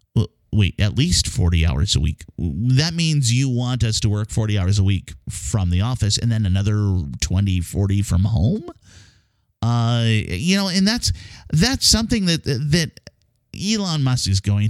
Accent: American